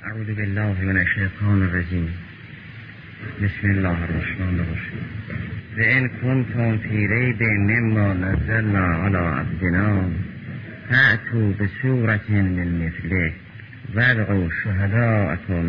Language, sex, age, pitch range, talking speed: Persian, male, 50-69, 90-115 Hz, 90 wpm